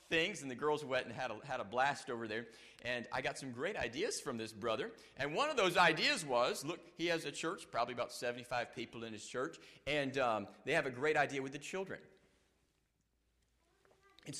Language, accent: English, American